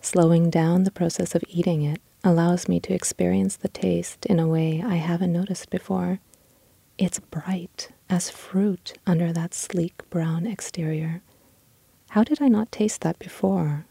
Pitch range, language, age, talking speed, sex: 155-175 Hz, English, 30-49, 155 wpm, female